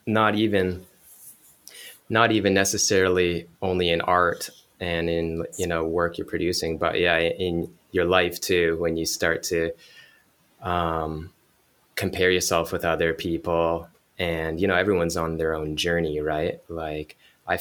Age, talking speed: 20-39, 145 wpm